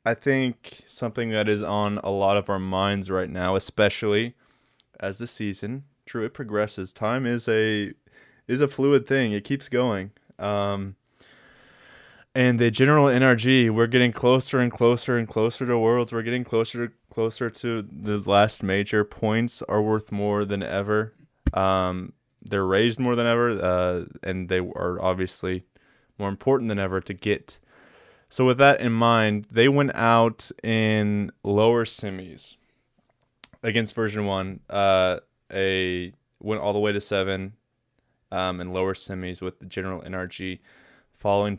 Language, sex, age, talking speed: English, male, 20-39, 155 wpm